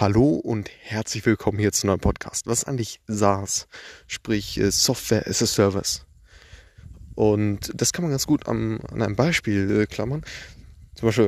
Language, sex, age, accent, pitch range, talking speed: German, male, 20-39, German, 100-135 Hz, 165 wpm